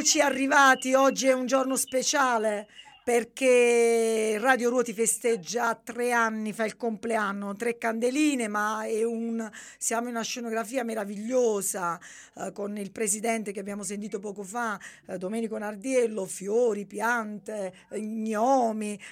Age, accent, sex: 40-59, native, female